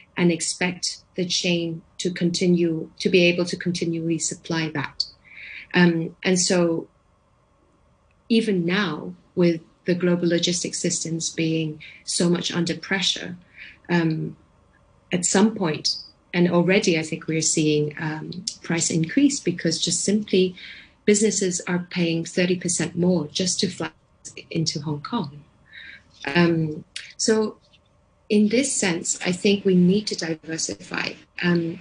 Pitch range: 165-185 Hz